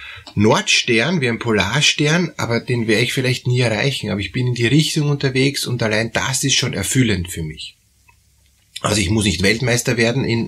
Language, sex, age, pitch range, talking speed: German, male, 30-49, 105-140 Hz, 190 wpm